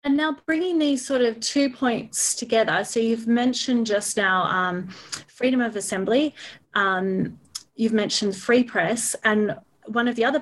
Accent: Australian